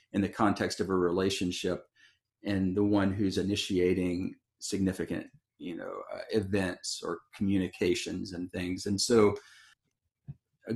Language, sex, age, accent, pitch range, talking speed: English, male, 40-59, American, 95-110 Hz, 130 wpm